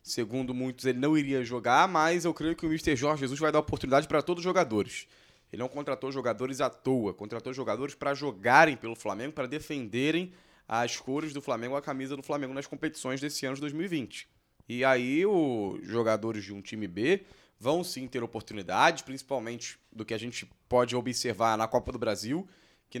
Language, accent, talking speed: Portuguese, Brazilian, 190 wpm